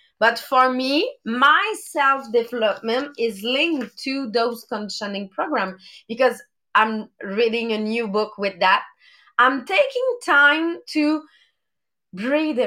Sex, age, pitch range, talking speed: female, 30-49, 220-300 Hz, 115 wpm